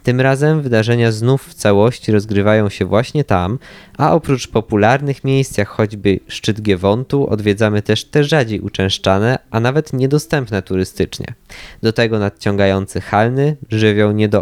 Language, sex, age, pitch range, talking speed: Polish, male, 20-39, 100-125 Hz, 135 wpm